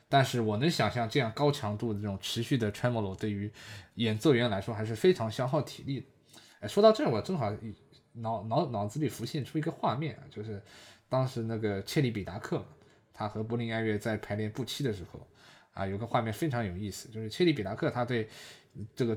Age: 20-39